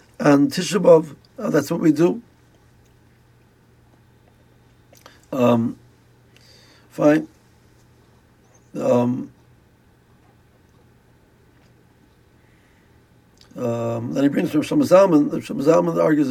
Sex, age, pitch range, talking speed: male, 60-79, 125-165 Hz, 65 wpm